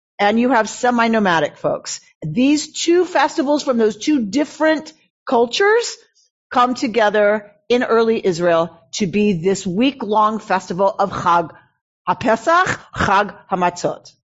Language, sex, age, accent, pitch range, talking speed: English, female, 40-59, American, 195-290 Hz, 115 wpm